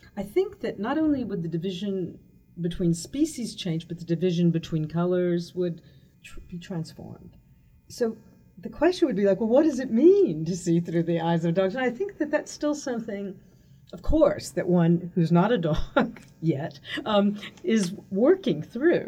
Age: 50-69